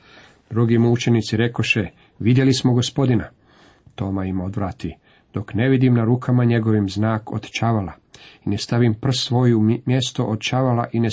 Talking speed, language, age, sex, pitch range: 145 wpm, Croatian, 40-59, male, 100-120 Hz